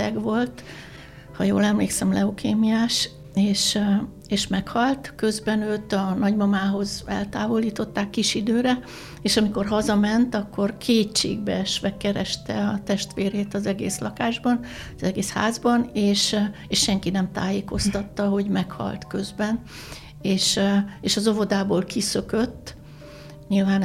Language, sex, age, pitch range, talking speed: Hungarian, female, 60-79, 195-215 Hz, 110 wpm